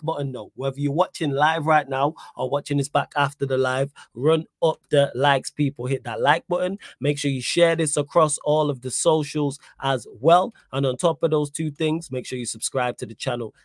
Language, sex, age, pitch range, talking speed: English, male, 20-39, 130-160 Hz, 225 wpm